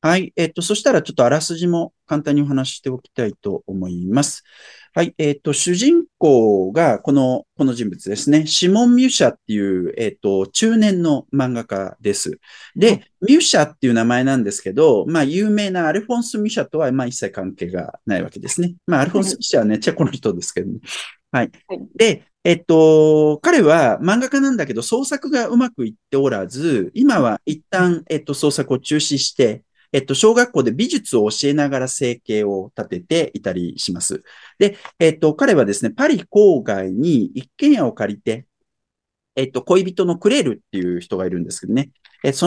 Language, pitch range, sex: Japanese, 120-200 Hz, male